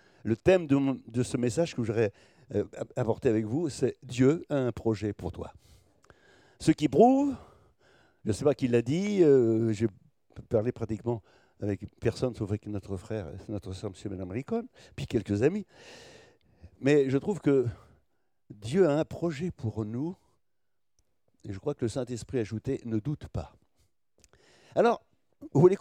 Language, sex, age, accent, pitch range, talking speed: French, male, 60-79, French, 115-170 Hz, 170 wpm